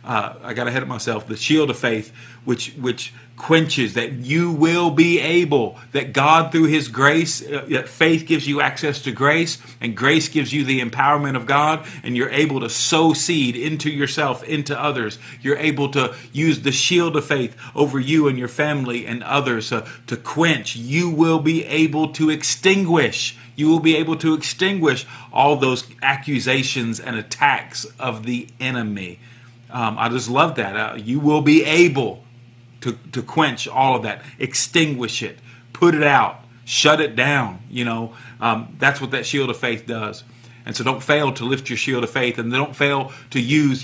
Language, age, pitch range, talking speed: English, 40-59, 120-150 Hz, 185 wpm